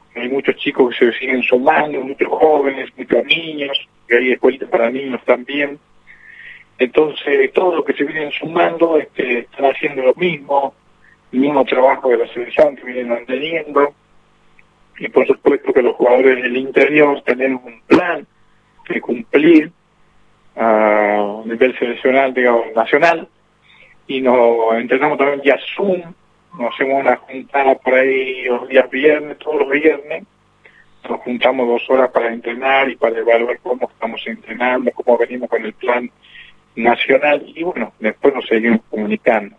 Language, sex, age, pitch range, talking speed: Spanish, male, 40-59, 120-150 Hz, 150 wpm